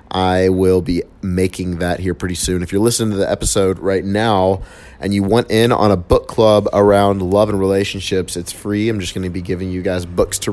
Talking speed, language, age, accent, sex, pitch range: 230 wpm, English, 30-49, American, male, 90-110 Hz